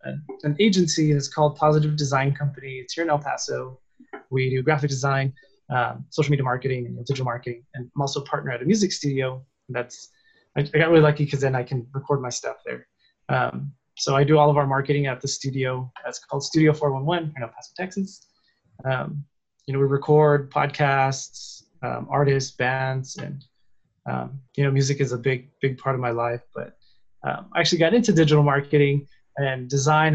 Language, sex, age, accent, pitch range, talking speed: English, male, 20-39, American, 130-155 Hz, 190 wpm